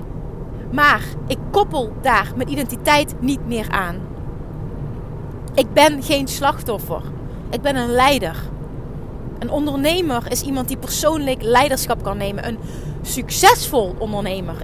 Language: Dutch